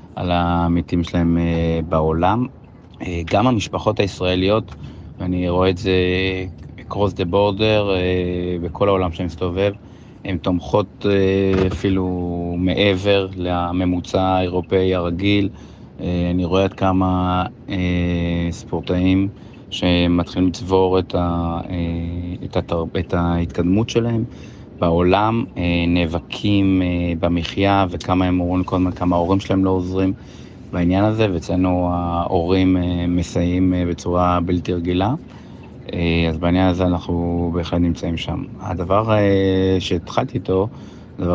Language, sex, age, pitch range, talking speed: Hebrew, male, 30-49, 85-95 Hz, 105 wpm